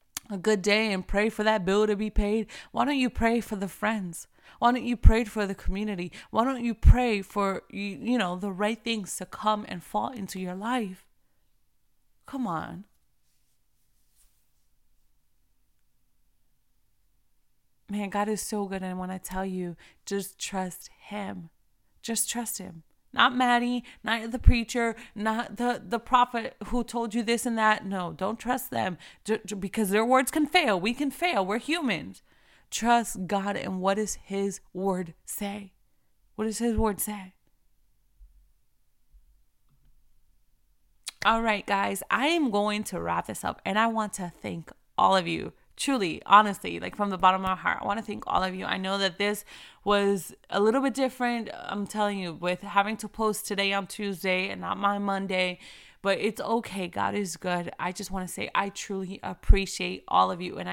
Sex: female